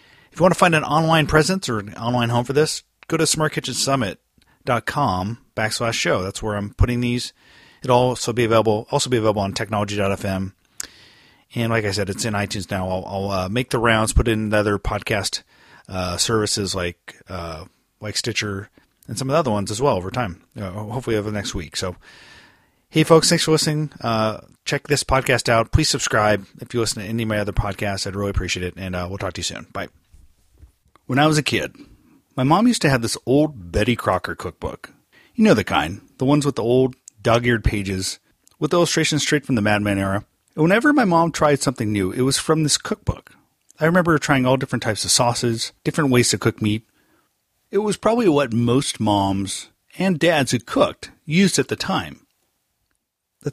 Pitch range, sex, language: 100-145 Hz, male, English